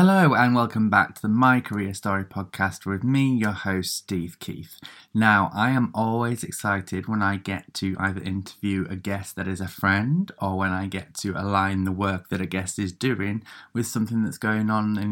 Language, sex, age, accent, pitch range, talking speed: English, male, 20-39, British, 95-125 Hz, 205 wpm